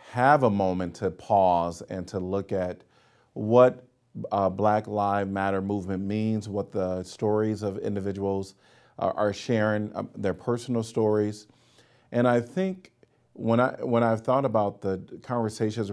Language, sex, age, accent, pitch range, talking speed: English, male, 40-59, American, 95-120 Hz, 145 wpm